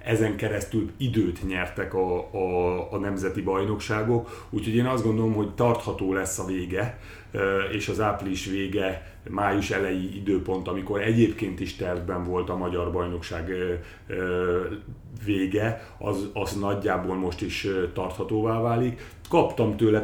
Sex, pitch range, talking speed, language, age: male, 95-110 Hz, 130 wpm, Hungarian, 30-49